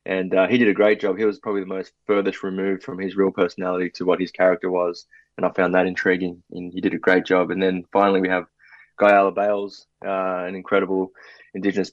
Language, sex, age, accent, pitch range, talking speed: English, male, 20-39, Australian, 95-100 Hz, 225 wpm